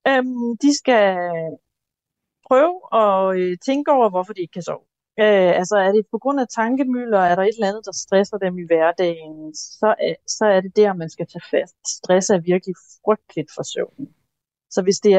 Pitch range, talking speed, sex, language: 170-215 Hz, 200 wpm, female, Danish